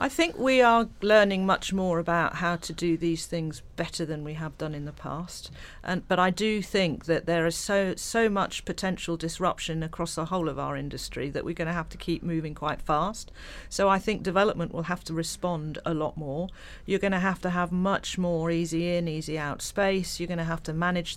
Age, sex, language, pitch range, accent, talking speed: 40-59, female, English, 160-180 Hz, British, 225 wpm